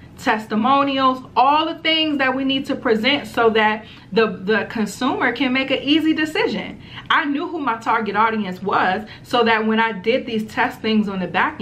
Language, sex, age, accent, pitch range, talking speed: English, female, 30-49, American, 210-245 Hz, 190 wpm